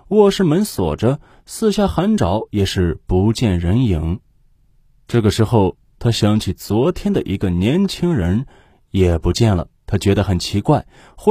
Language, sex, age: Chinese, male, 20-39